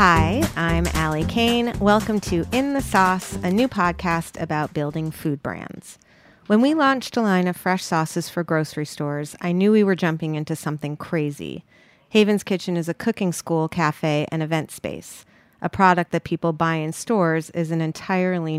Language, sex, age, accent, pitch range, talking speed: English, female, 30-49, American, 155-200 Hz, 180 wpm